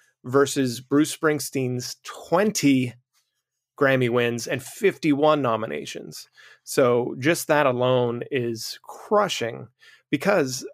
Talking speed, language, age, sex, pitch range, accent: 90 wpm, English, 30-49, male, 125-145 Hz, American